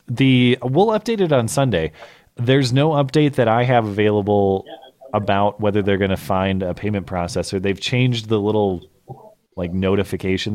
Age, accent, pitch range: 30-49, American, 95-125 Hz